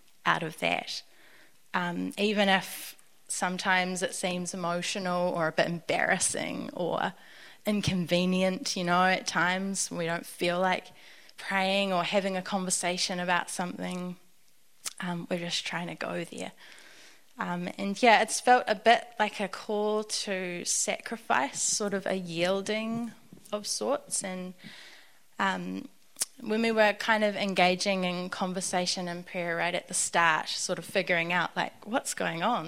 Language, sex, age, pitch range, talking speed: English, female, 10-29, 175-200 Hz, 145 wpm